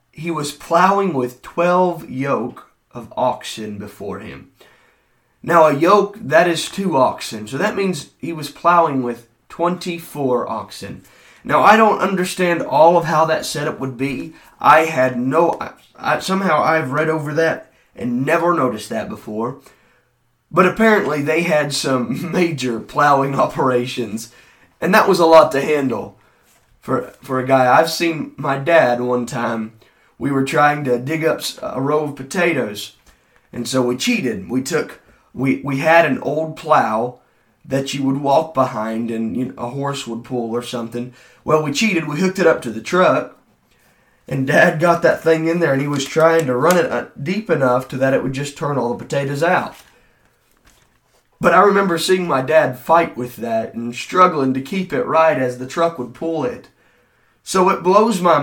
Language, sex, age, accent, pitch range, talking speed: English, male, 30-49, American, 130-170 Hz, 180 wpm